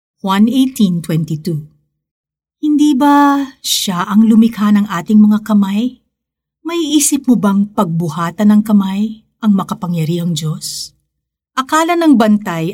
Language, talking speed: Filipino, 110 wpm